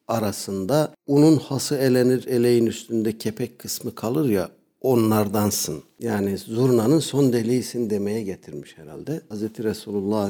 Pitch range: 100-135 Hz